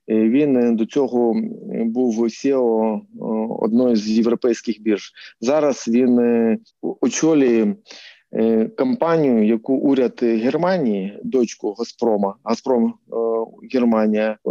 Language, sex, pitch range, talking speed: Ukrainian, male, 110-135 Hz, 85 wpm